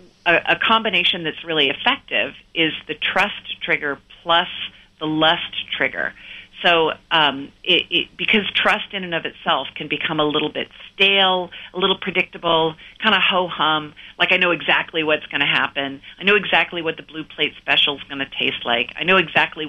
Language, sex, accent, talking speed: English, female, American, 175 wpm